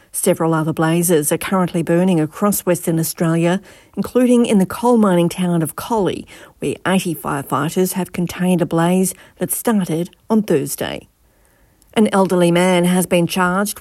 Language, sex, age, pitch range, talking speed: English, female, 50-69, 170-205 Hz, 150 wpm